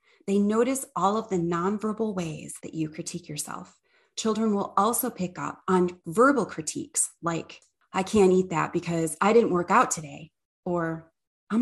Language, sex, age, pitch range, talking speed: English, female, 30-49, 170-230 Hz, 165 wpm